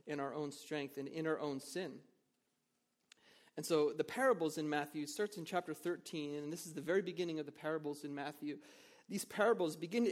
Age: 30-49